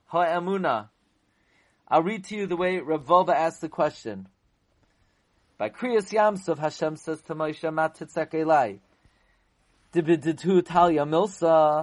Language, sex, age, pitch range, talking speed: English, male, 30-49, 160-220 Hz, 85 wpm